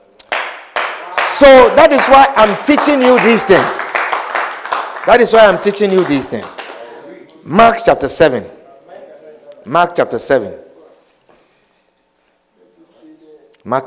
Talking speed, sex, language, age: 105 wpm, male, English, 50-69